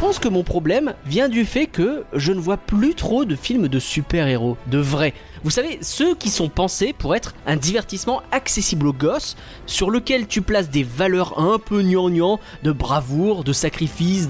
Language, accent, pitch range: French, French, 155-230 Hz